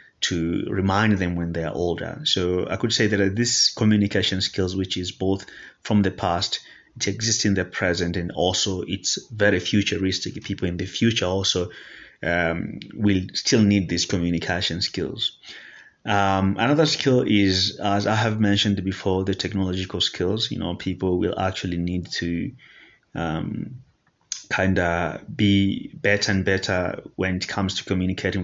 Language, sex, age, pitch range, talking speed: English, male, 30-49, 90-100 Hz, 155 wpm